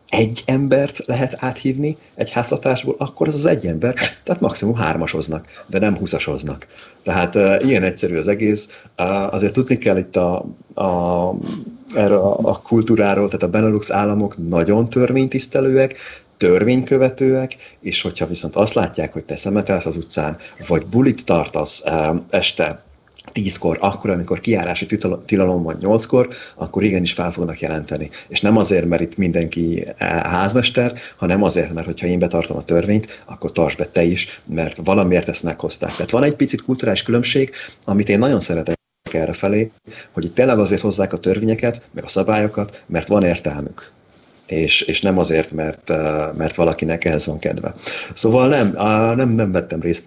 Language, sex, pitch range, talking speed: Hungarian, male, 85-115 Hz, 160 wpm